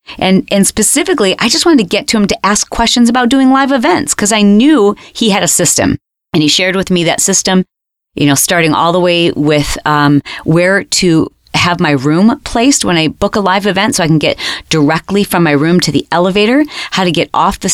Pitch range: 150-200 Hz